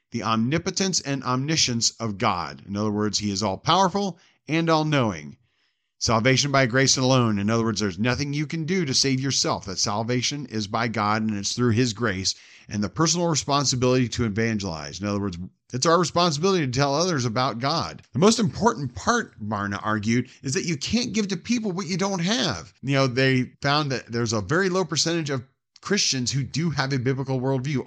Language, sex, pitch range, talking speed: English, male, 120-170 Hz, 195 wpm